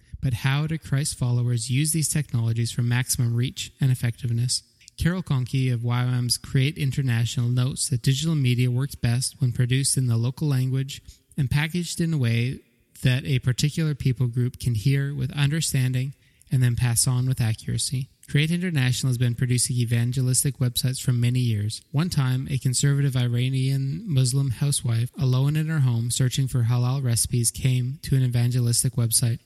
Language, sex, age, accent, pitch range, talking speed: English, male, 20-39, American, 120-140 Hz, 165 wpm